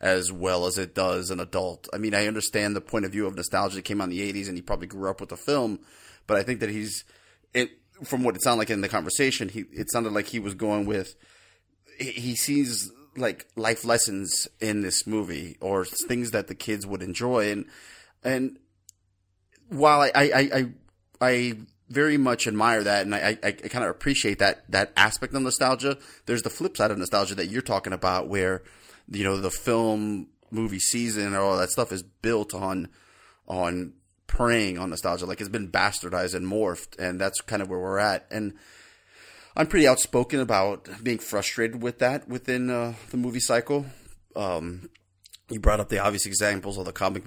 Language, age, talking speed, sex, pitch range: English, 30-49, 200 wpm, male, 95-115 Hz